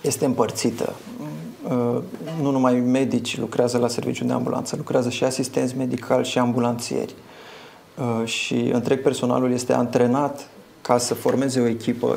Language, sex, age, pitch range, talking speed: Romanian, male, 30-49, 120-130 Hz, 130 wpm